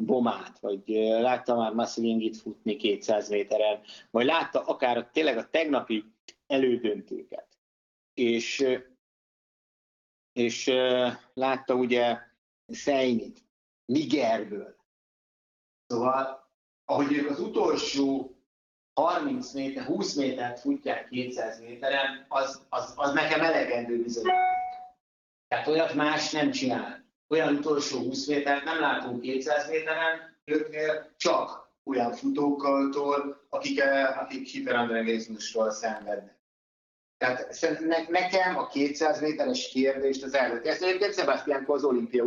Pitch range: 120-155 Hz